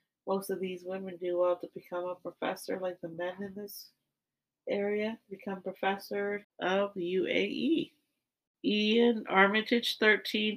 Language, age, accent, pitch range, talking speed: English, 40-59, American, 170-210 Hz, 130 wpm